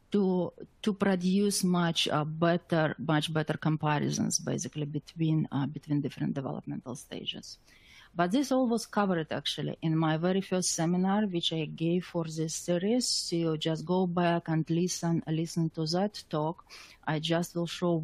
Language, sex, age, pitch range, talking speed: English, female, 30-49, 155-185 Hz, 160 wpm